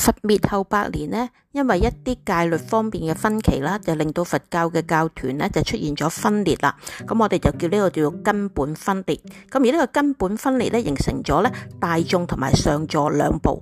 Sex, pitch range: female, 170-240 Hz